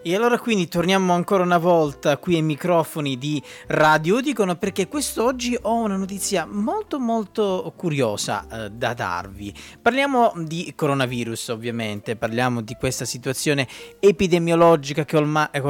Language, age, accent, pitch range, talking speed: Italian, 20-39, native, 130-180 Hz, 135 wpm